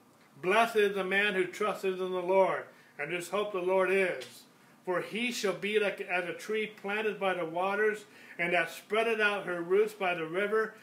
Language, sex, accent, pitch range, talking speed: English, male, American, 175-210 Hz, 200 wpm